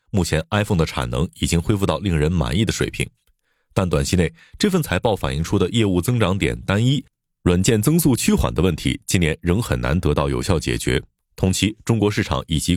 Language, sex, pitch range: Chinese, male, 85-115 Hz